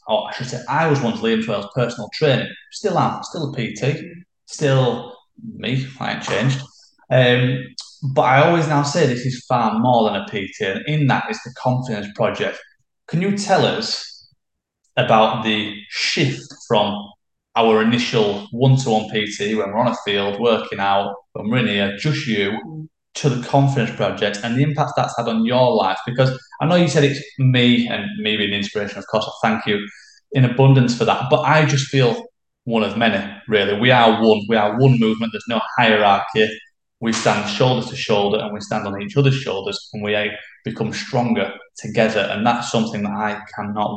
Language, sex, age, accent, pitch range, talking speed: English, male, 20-39, British, 105-135 Hz, 195 wpm